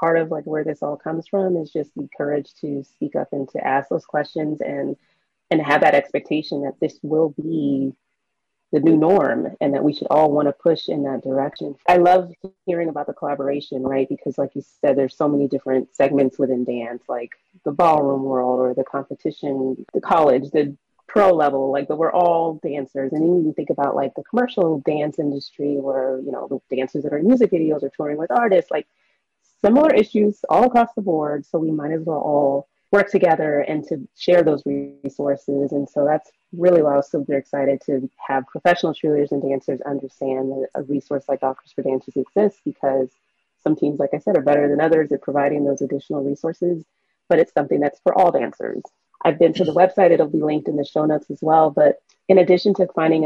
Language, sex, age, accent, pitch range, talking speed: English, female, 30-49, American, 140-165 Hz, 205 wpm